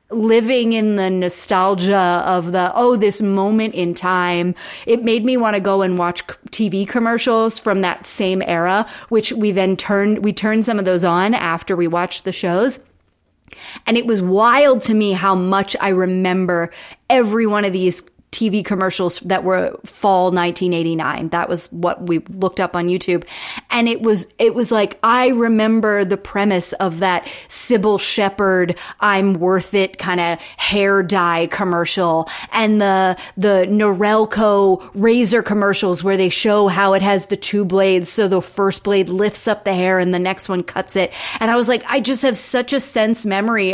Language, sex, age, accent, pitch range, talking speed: English, female, 30-49, American, 185-220 Hz, 180 wpm